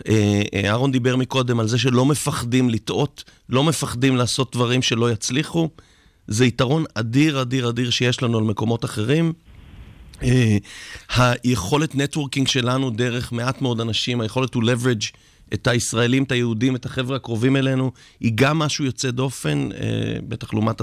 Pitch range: 115-140 Hz